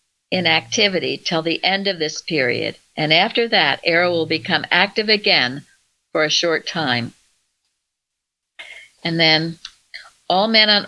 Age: 60-79